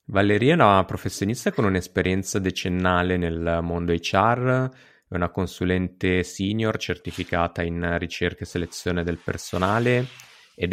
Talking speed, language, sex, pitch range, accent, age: 125 wpm, Italian, male, 85-95 Hz, native, 30-49